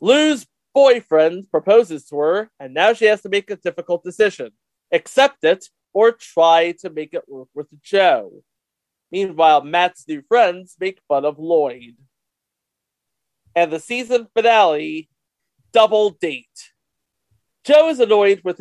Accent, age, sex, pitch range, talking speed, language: American, 40-59, male, 150-210 Hz, 135 wpm, English